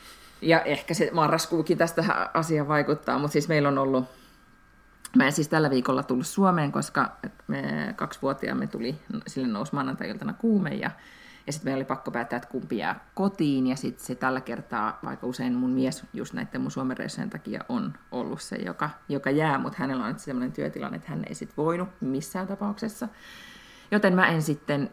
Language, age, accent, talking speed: Finnish, 30-49, native, 185 wpm